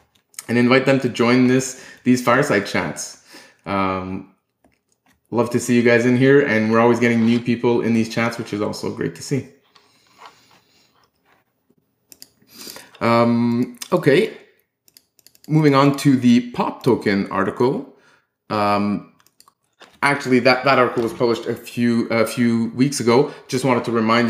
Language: English